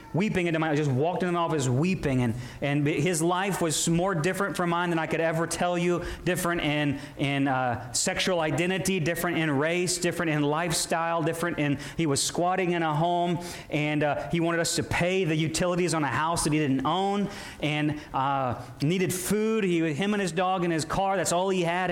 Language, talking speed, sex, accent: English, 210 wpm, male, American